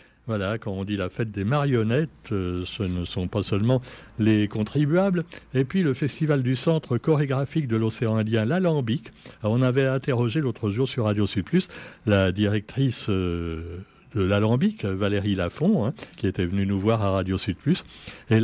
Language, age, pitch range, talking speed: French, 60-79, 105-140 Hz, 165 wpm